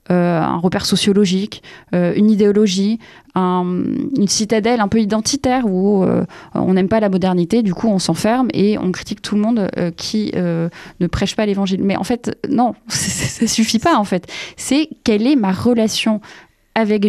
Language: French